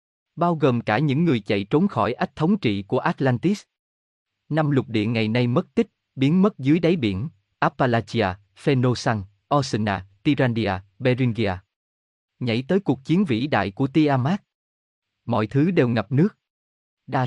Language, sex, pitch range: Vietnamese, male, 110-155 Hz